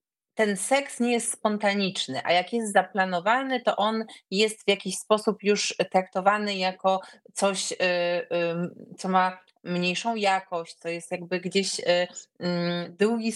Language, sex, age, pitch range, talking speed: Polish, female, 30-49, 180-215 Hz, 125 wpm